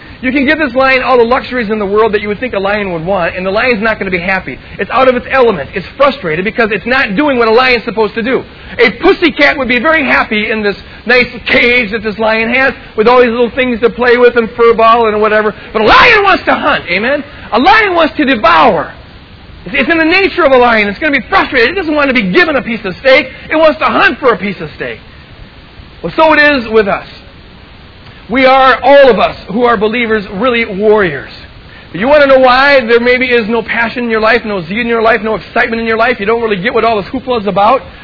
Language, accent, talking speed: English, American, 255 wpm